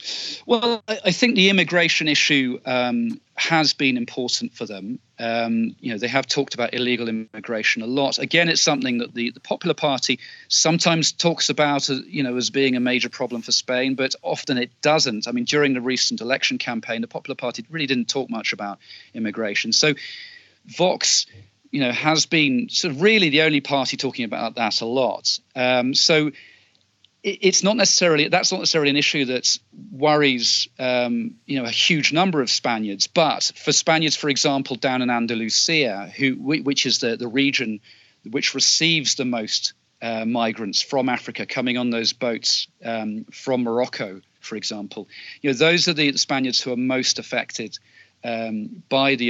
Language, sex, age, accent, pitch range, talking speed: English, male, 40-59, British, 115-155 Hz, 175 wpm